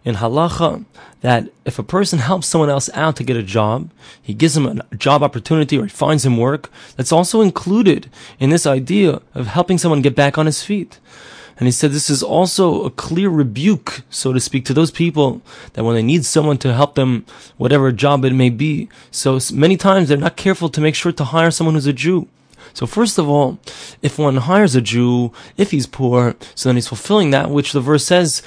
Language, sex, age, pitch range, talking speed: English, male, 20-39, 130-170 Hz, 215 wpm